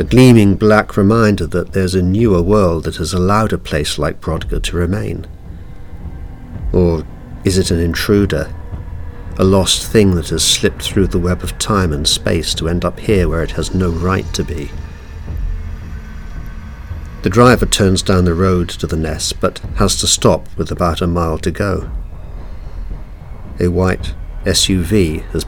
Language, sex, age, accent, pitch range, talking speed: English, male, 50-69, British, 80-95 Hz, 165 wpm